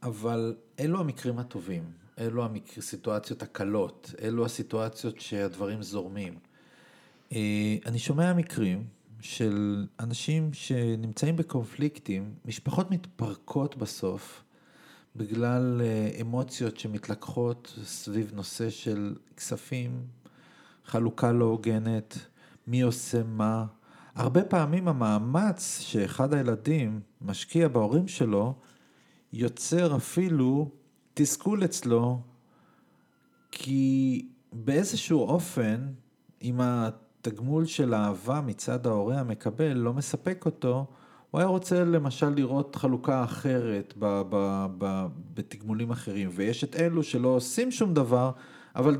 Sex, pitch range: male, 110-150 Hz